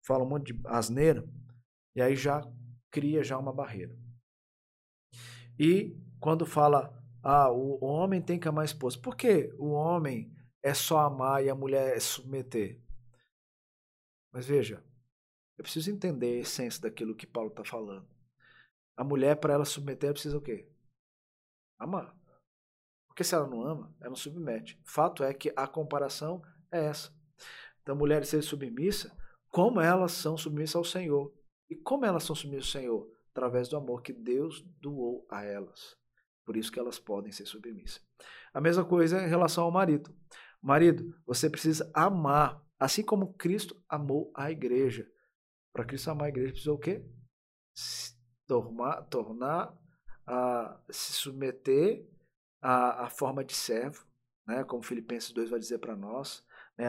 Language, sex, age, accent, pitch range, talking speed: Portuguese, male, 50-69, Brazilian, 120-155 Hz, 155 wpm